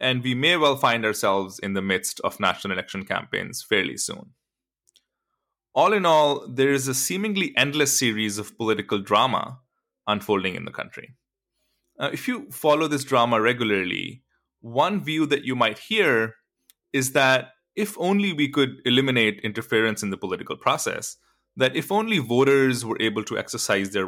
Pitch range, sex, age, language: 110-150 Hz, male, 20-39, English